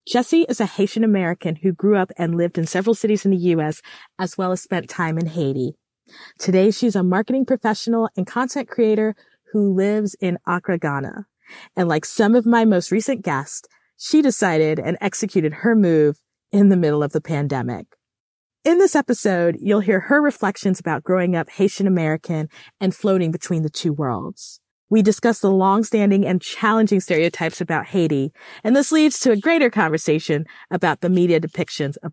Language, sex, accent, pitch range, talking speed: English, female, American, 160-220 Hz, 175 wpm